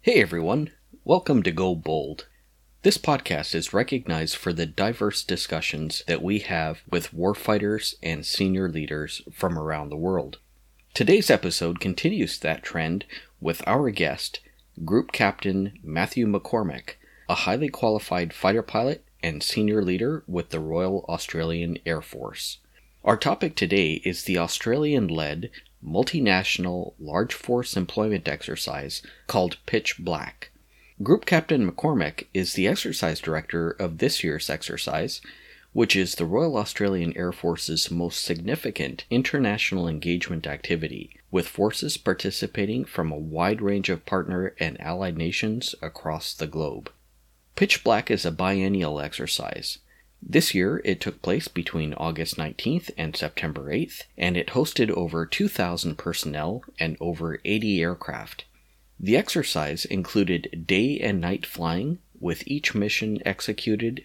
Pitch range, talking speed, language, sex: 80-100 Hz, 130 wpm, English, male